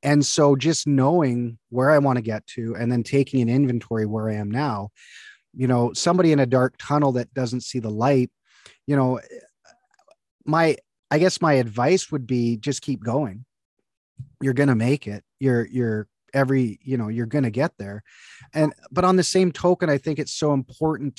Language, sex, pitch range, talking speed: English, male, 120-145 Hz, 195 wpm